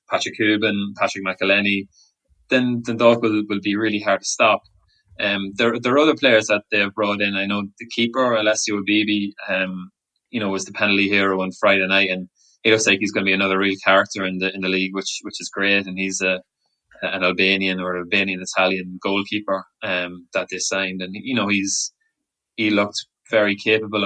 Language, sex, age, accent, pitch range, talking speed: English, male, 20-39, Irish, 95-105 Hz, 200 wpm